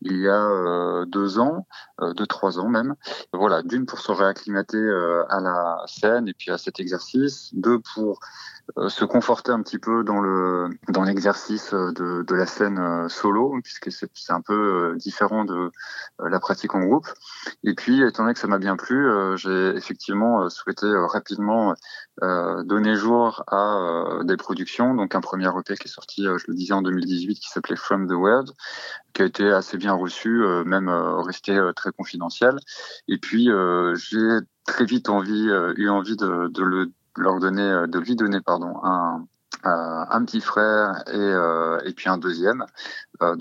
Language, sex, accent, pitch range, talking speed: French, male, French, 90-105 Hz, 175 wpm